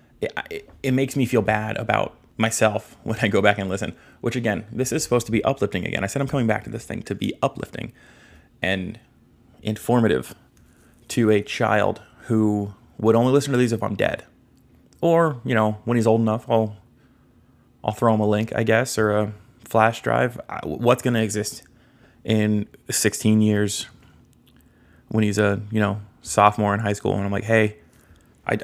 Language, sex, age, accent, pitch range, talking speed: English, male, 20-39, American, 105-120 Hz, 185 wpm